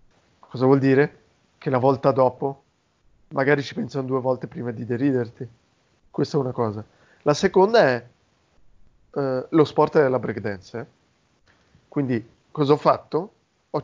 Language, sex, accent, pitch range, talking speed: Italian, male, native, 110-150 Hz, 145 wpm